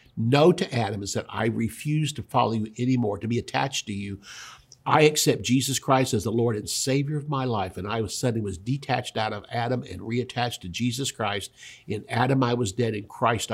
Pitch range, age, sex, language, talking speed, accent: 110-130 Hz, 50-69, male, English, 215 wpm, American